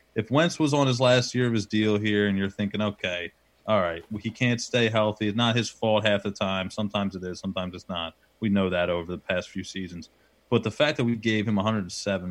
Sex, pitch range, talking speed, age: male, 95-115 Hz, 245 wpm, 30-49